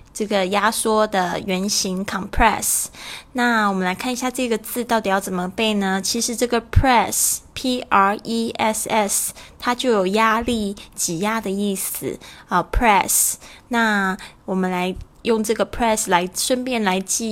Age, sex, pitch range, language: 20-39, female, 185-225 Hz, Chinese